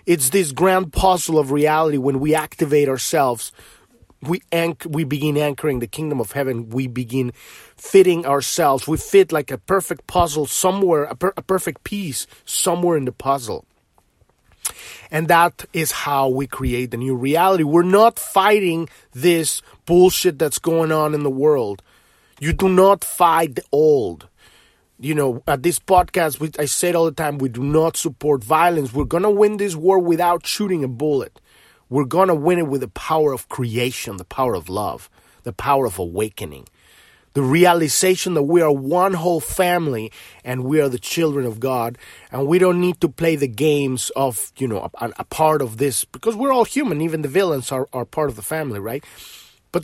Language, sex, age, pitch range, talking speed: English, male, 30-49, 135-180 Hz, 185 wpm